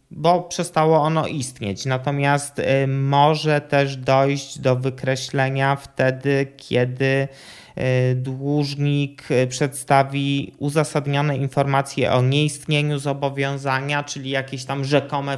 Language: Polish